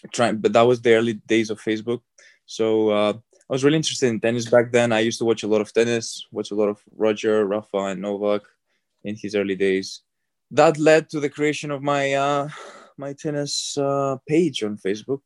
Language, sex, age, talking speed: English, male, 20-39, 205 wpm